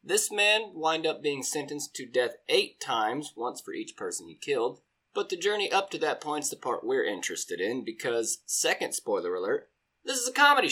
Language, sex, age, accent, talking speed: English, male, 20-39, American, 200 wpm